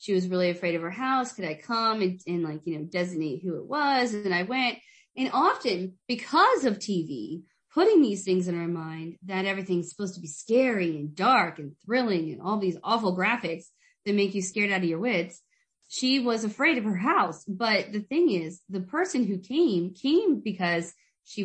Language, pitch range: English, 180-245 Hz